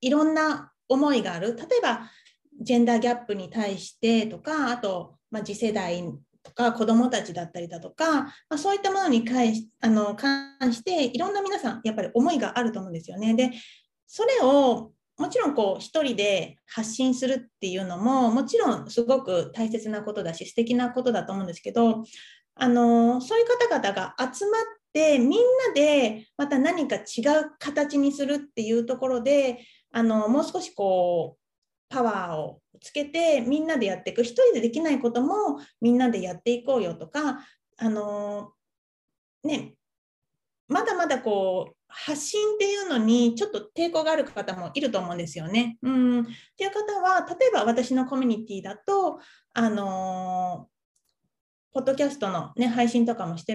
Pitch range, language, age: 220-290 Hz, Japanese, 30-49